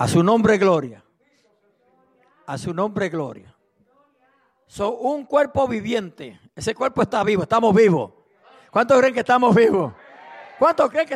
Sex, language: male, English